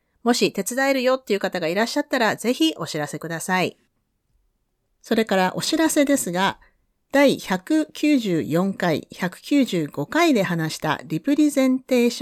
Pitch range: 170-255 Hz